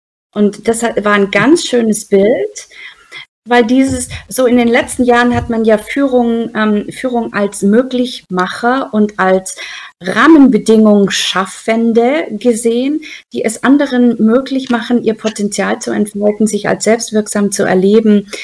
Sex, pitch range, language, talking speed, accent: female, 205-250 Hz, German, 135 wpm, German